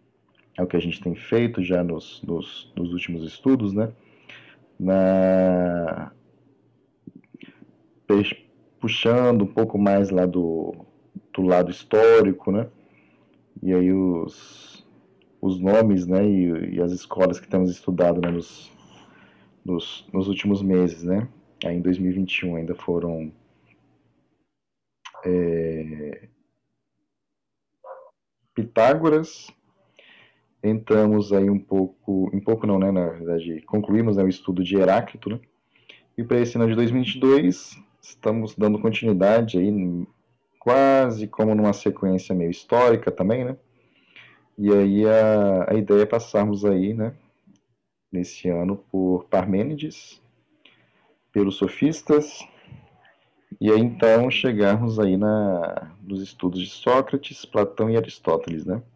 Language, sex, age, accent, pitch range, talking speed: Portuguese, male, 40-59, Brazilian, 90-110 Hz, 115 wpm